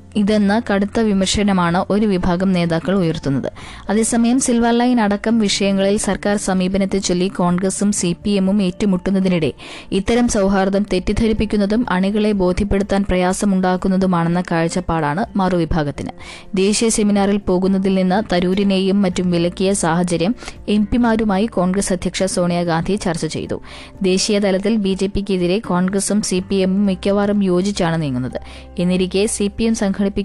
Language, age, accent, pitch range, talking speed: Malayalam, 20-39, native, 180-200 Hz, 90 wpm